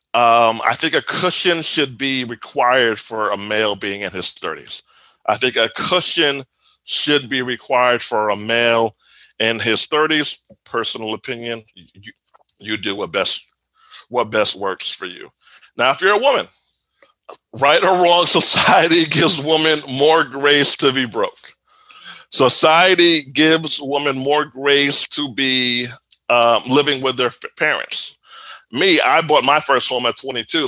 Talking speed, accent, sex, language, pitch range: 150 wpm, American, male, English, 125-165 Hz